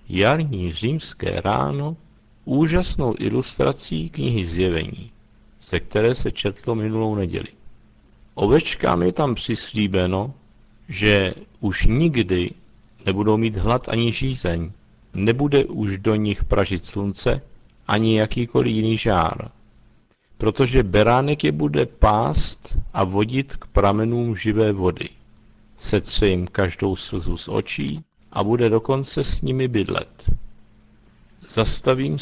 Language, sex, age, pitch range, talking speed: Czech, male, 50-69, 100-120 Hz, 110 wpm